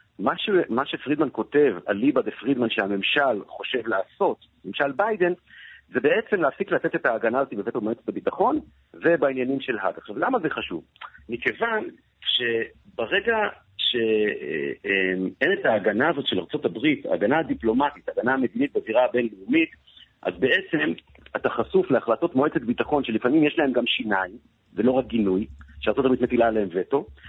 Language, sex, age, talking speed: Hebrew, male, 50-69, 140 wpm